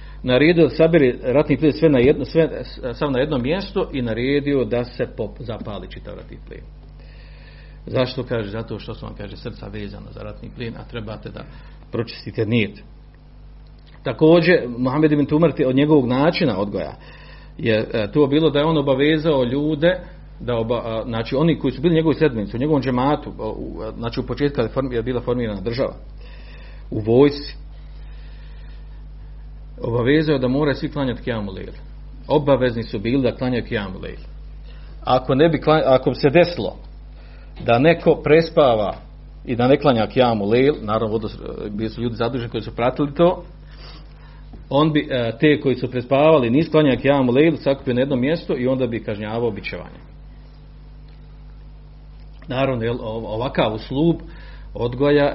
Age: 50-69